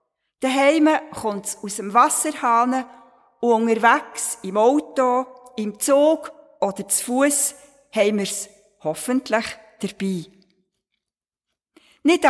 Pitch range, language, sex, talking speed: 220-280 Hz, German, female, 100 wpm